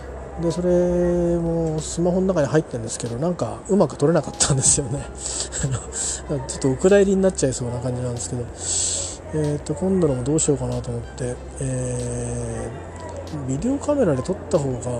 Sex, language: male, Japanese